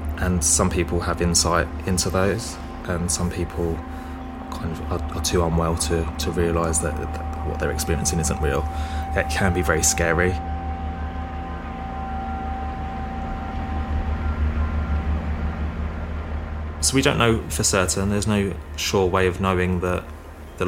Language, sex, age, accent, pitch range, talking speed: English, male, 20-39, British, 80-90 Hz, 130 wpm